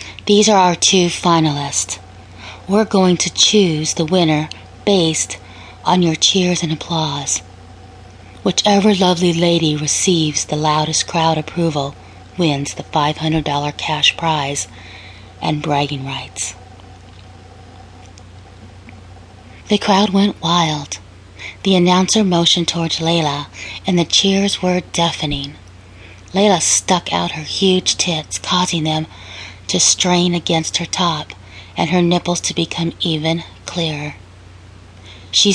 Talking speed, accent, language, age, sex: 115 wpm, American, English, 30-49, female